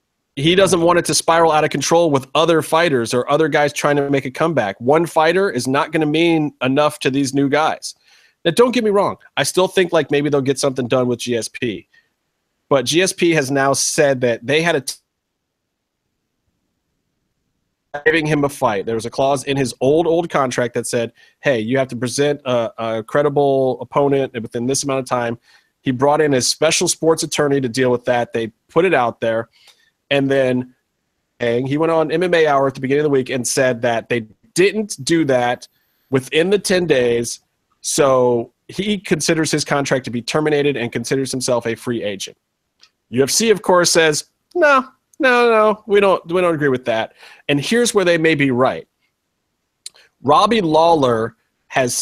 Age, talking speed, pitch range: 30-49, 190 wpm, 125-165 Hz